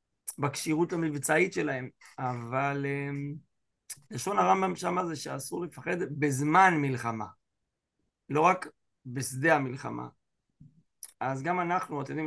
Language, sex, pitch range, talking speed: Hebrew, male, 135-160 Hz, 105 wpm